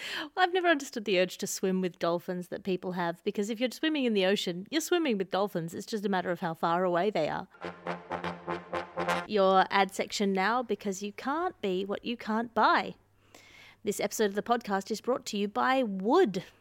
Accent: Australian